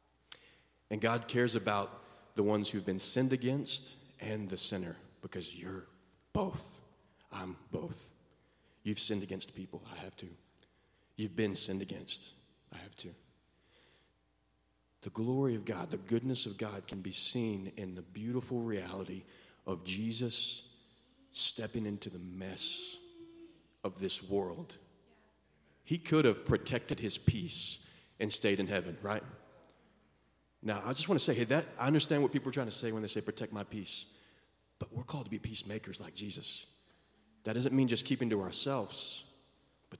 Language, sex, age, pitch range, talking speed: English, male, 40-59, 95-120 Hz, 160 wpm